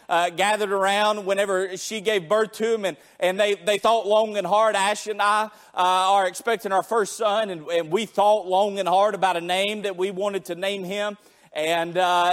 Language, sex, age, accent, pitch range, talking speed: English, male, 30-49, American, 185-215 Hz, 215 wpm